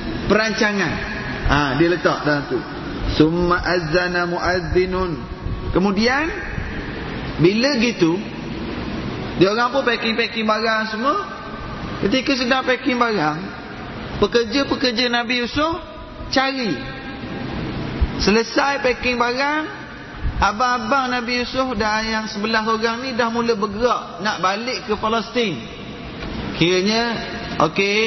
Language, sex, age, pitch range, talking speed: Malay, male, 30-49, 180-240 Hz, 100 wpm